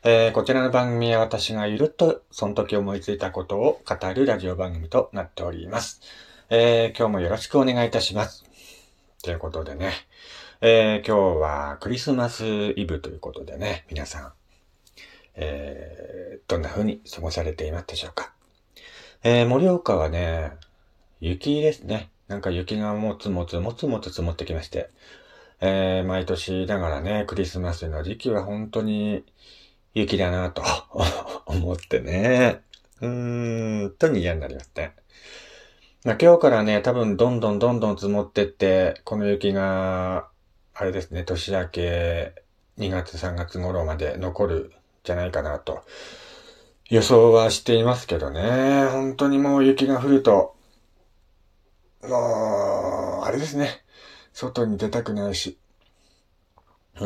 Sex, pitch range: male, 90-120 Hz